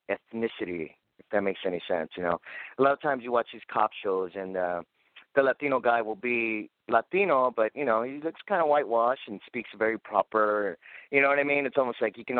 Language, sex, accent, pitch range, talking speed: English, male, American, 115-140 Hz, 225 wpm